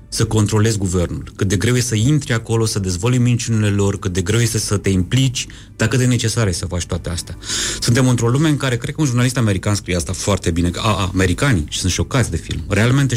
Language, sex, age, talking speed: Romanian, male, 30-49, 235 wpm